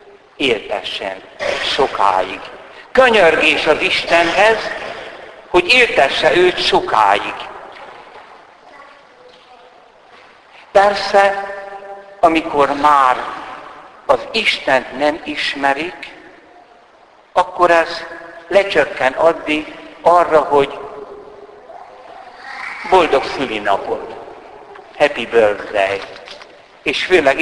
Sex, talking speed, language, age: male, 65 wpm, Hungarian, 60-79